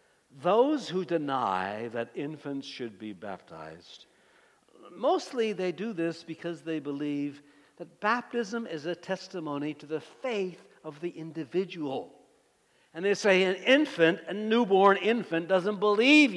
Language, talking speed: English, 130 wpm